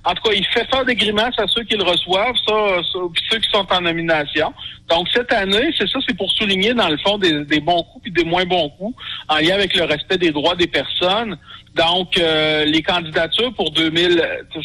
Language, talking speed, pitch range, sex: French, 225 wpm, 145-195 Hz, male